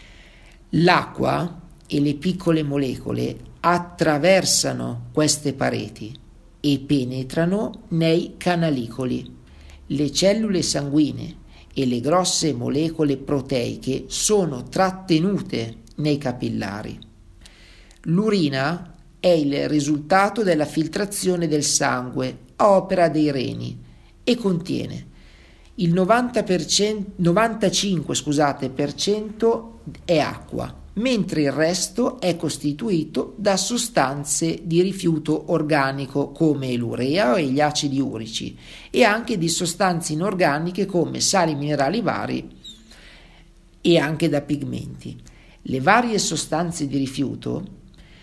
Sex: male